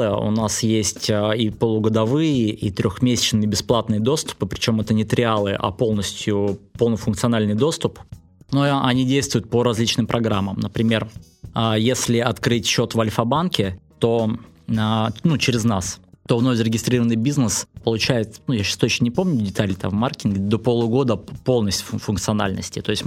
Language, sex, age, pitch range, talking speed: Russian, male, 20-39, 105-125 Hz, 140 wpm